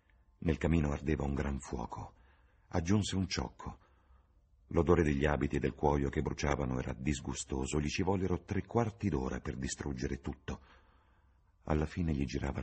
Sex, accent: male, native